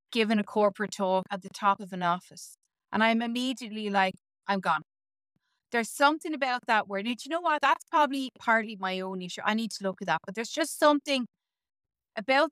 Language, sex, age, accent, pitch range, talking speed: English, female, 30-49, Irish, 195-255 Hz, 200 wpm